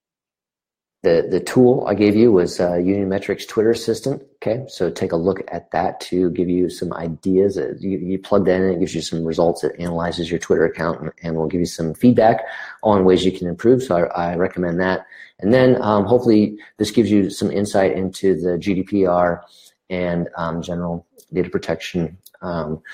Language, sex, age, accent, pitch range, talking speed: English, male, 40-59, American, 85-105 Hz, 195 wpm